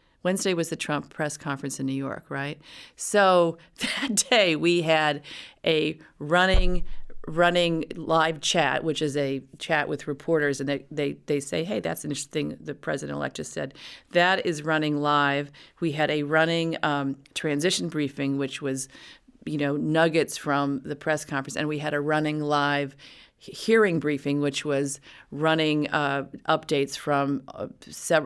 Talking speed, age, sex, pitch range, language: 160 wpm, 40-59, female, 140-165 Hz, English